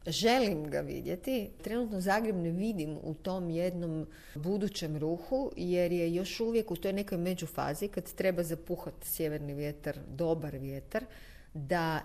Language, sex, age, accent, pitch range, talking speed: Croatian, female, 40-59, native, 155-195 Hz, 145 wpm